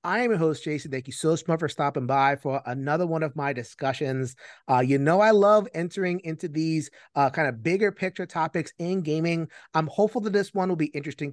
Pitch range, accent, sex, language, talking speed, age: 140-185 Hz, American, male, English, 215 wpm, 30-49